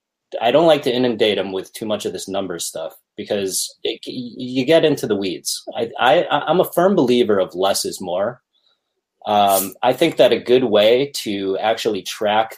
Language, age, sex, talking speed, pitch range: English, 30-49, male, 175 wpm, 95-135 Hz